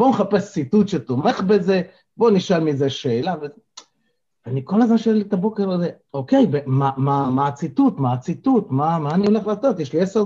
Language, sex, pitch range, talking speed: Hebrew, male, 120-175 Hz, 185 wpm